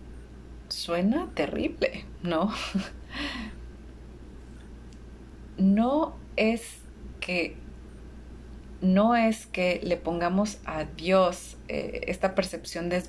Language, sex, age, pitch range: Spanish, female, 30-49, 155-195 Hz